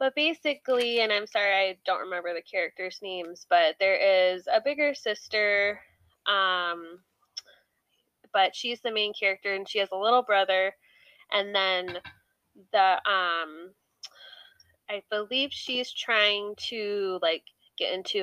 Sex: female